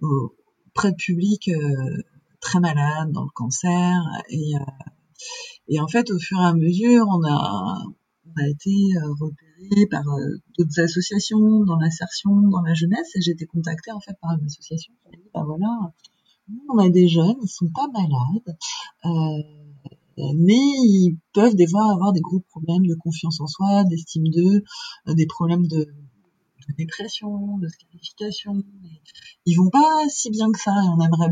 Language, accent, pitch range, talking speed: French, French, 165-200 Hz, 175 wpm